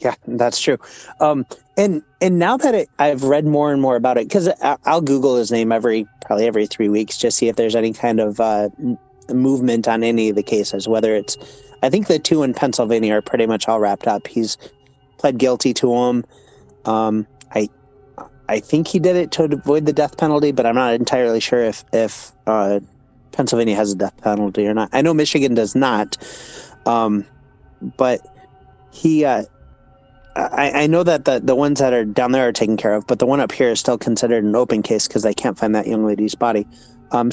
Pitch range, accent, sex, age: 110-130 Hz, American, male, 30-49